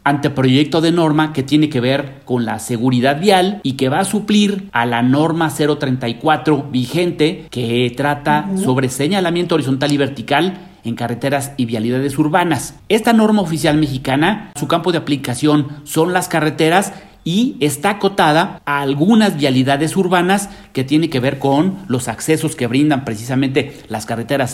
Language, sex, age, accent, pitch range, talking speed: Spanish, male, 40-59, Mexican, 140-180 Hz, 155 wpm